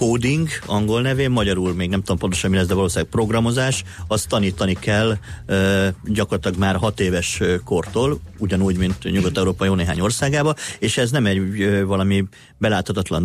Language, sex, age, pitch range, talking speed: Hungarian, male, 30-49, 95-115 Hz, 145 wpm